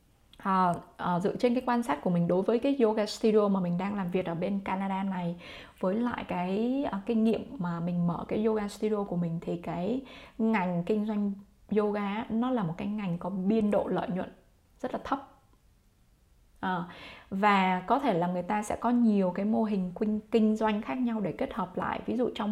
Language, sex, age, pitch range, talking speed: Vietnamese, female, 20-39, 185-225 Hz, 205 wpm